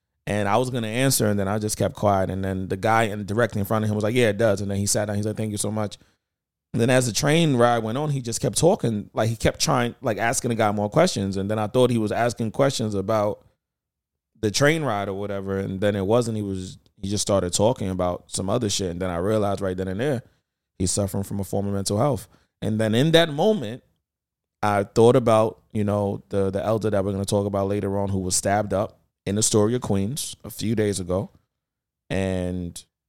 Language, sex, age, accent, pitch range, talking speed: English, male, 20-39, American, 95-120 Hz, 250 wpm